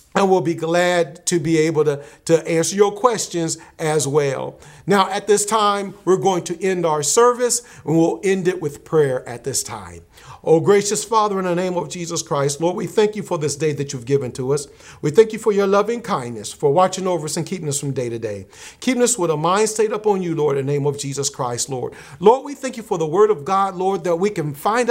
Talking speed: 250 wpm